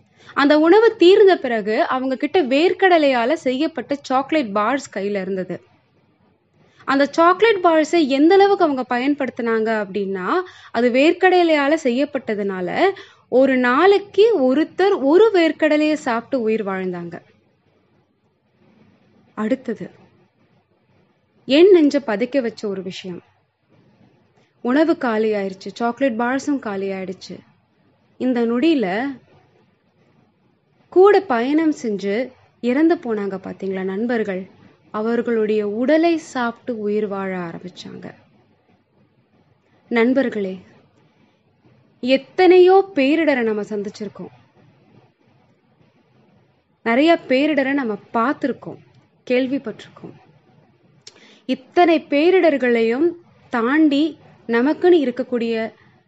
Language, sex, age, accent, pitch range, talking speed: Tamil, female, 20-39, native, 220-315 Hz, 70 wpm